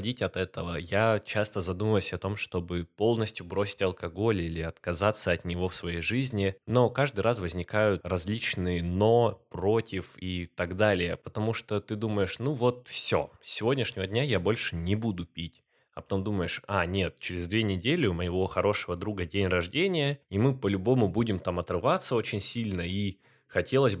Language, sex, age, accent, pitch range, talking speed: Russian, male, 20-39, native, 90-115 Hz, 165 wpm